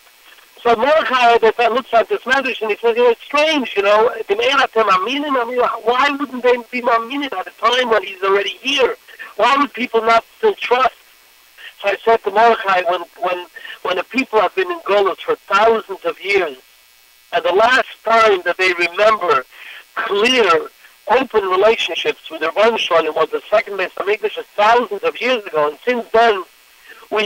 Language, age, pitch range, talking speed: English, 60-79, 195-280 Hz, 180 wpm